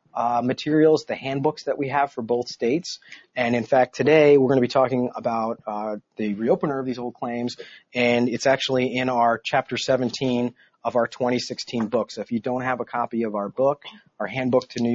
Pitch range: 115-135 Hz